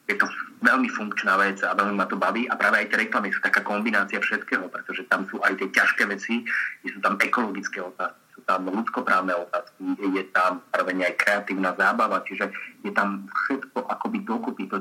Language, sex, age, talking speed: Slovak, male, 30-49, 195 wpm